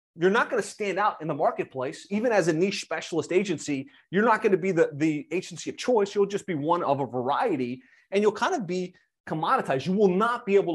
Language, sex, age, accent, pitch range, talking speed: English, male, 30-49, American, 155-200 Hz, 240 wpm